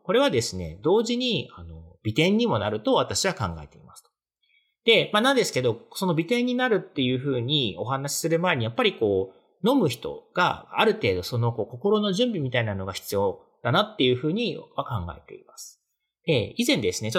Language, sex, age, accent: Japanese, male, 40-59, native